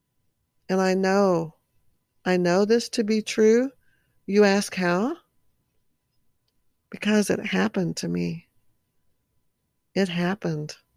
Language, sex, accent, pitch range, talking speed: English, female, American, 170-205 Hz, 105 wpm